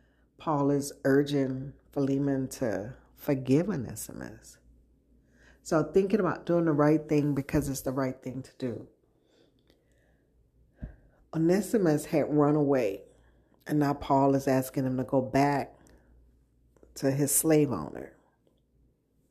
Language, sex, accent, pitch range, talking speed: English, female, American, 125-155 Hz, 120 wpm